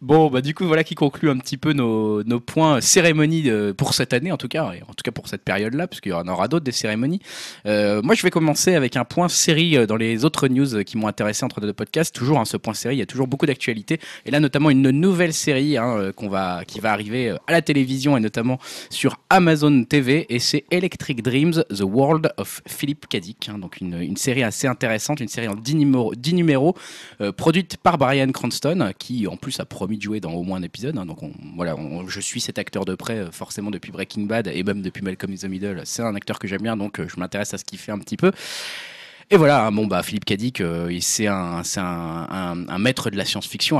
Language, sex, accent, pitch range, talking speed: French, male, French, 100-150 Hz, 245 wpm